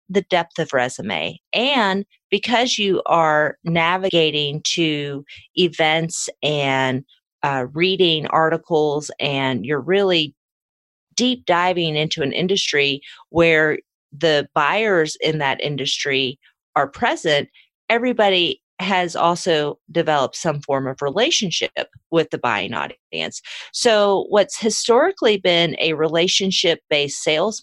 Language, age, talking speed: English, 40-59, 110 wpm